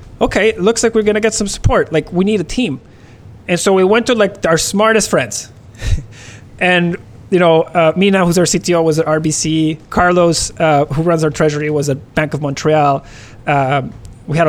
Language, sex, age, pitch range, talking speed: English, male, 30-49, 140-175 Hz, 200 wpm